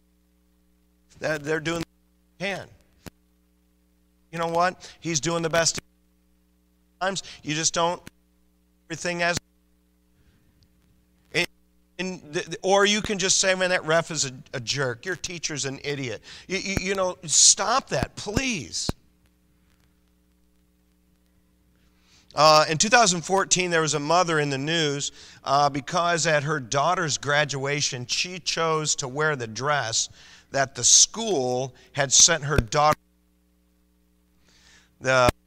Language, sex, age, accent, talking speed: English, male, 40-59, American, 130 wpm